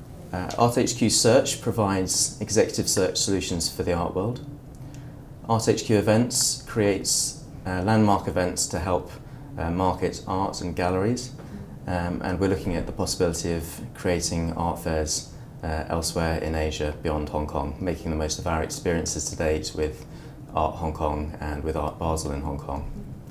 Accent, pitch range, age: British, 80-100 Hz, 20-39